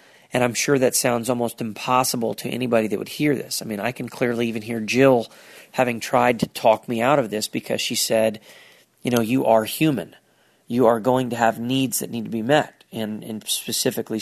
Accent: American